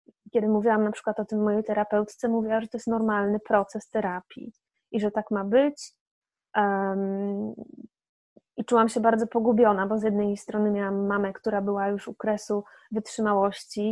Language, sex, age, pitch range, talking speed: Polish, female, 20-39, 205-225 Hz, 160 wpm